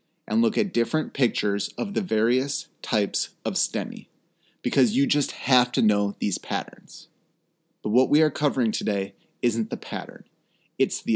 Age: 30-49